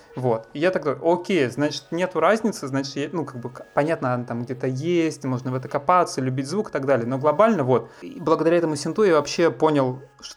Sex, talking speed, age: male, 225 wpm, 20-39